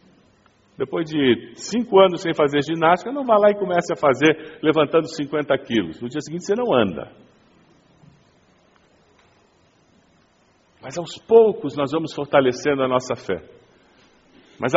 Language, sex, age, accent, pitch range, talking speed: Portuguese, male, 50-69, Brazilian, 150-205 Hz, 135 wpm